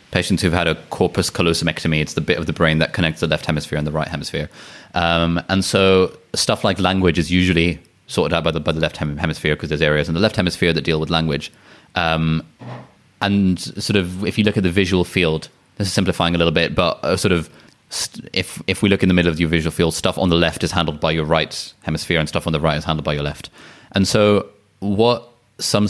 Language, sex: English, male